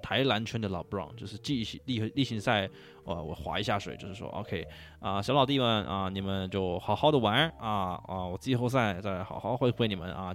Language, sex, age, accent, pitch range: Chinese, male, 20-39, native, 95-115 Hz